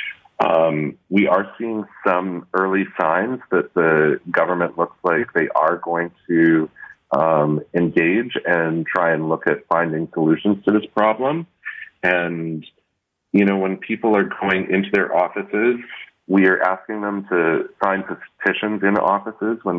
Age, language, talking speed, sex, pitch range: 40-59, English, 150 wpm, male, 80-100 Hz